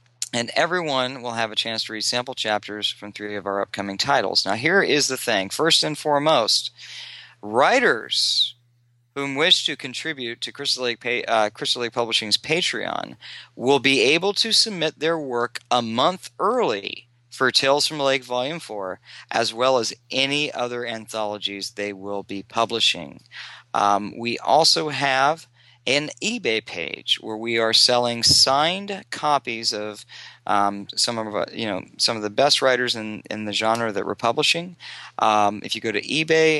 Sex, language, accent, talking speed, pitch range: male, English, American, 160 wpm, 110-140 Hz